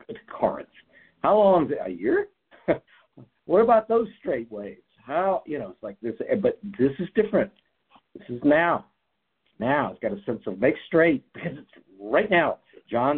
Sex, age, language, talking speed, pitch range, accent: male, 60-79, English, 180 wpm, 115-185 Hz, American